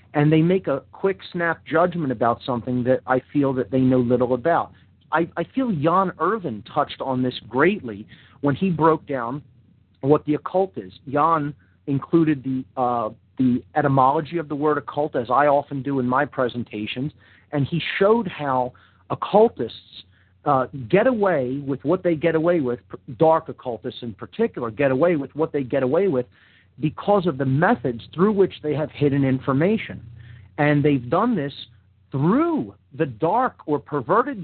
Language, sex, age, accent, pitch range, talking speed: English, male, 40-59, American, 125-175 Hz, 165 wpm